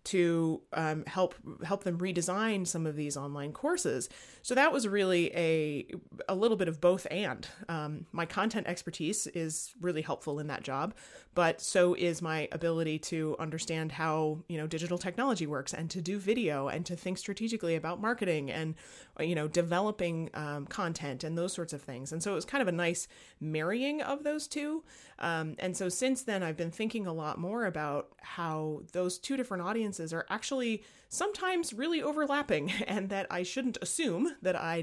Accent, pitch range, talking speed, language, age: American, 155-195 Hz, 190 wpm, English, 30-49